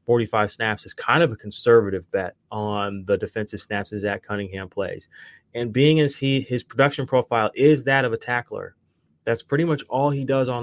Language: English